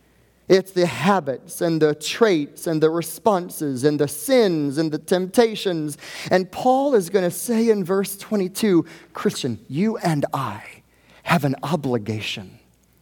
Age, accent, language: 30-49, American, English